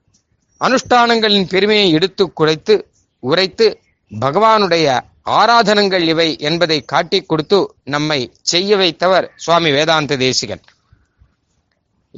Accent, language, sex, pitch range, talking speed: native, Tamil, male, 145-195 Hz, 85 wpm